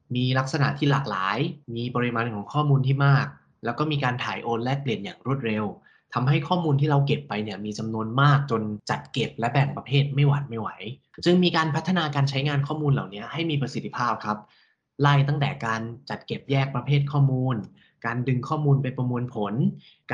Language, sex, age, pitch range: Thai, male, 20-39, 120-145 Hz